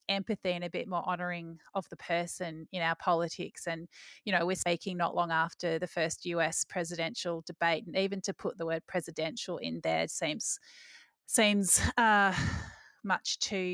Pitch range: 175-195 Hz